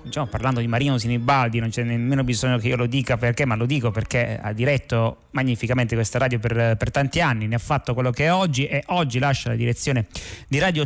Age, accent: 30-49, native